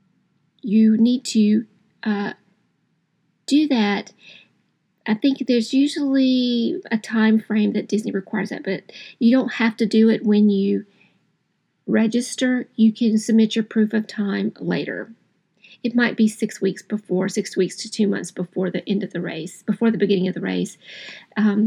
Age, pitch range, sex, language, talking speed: 40-59, 205-240 Hz, female, English, 165 wpm